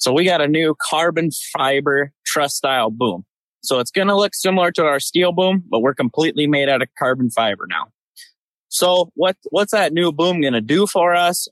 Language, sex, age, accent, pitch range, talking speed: English, male, 20-39, American, 135-165 Hz, 210 wpm